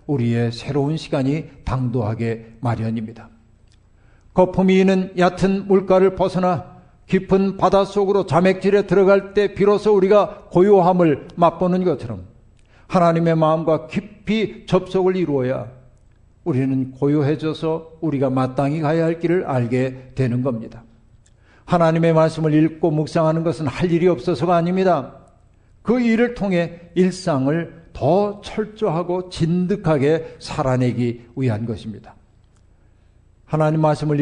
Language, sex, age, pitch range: Korean, male, 60-79, 125-175 Hz